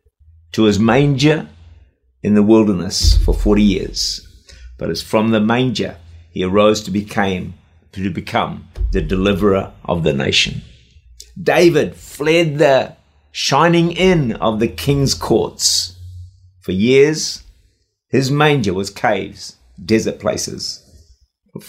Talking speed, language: 115 wpm, English